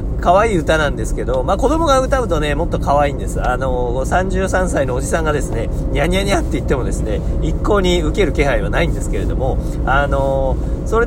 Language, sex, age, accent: Japanese, male, 40-59, native